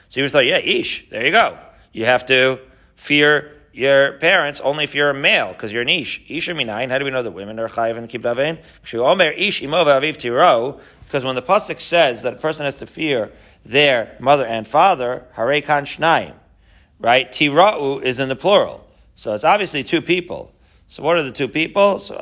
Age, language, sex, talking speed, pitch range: 40-59, English, male, 190 wpm, 115-150 Hz